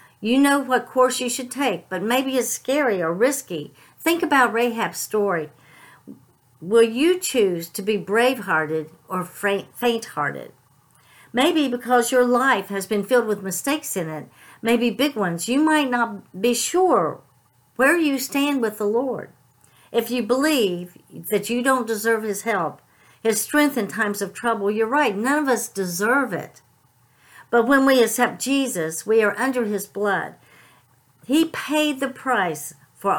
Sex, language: female, English